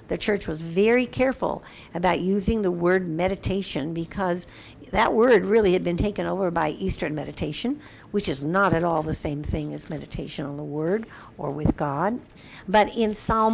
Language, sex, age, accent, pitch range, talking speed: English, female, 60-79, American, 155-210 Hz, 175 wpm